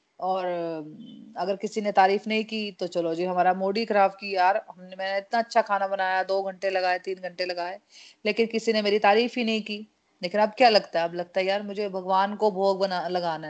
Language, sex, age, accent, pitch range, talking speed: Hindi, female, 30-49, native, 185-220 Hz, 220 wpm